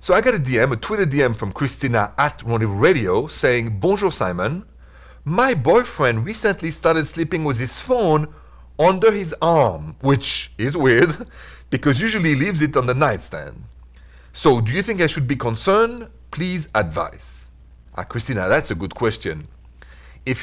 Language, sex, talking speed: English, male, 160 wpm